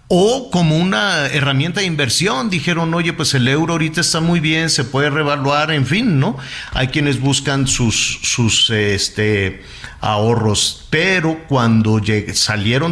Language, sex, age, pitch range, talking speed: Spanish, male, 50-69, 110-145 Hz, 140 wpm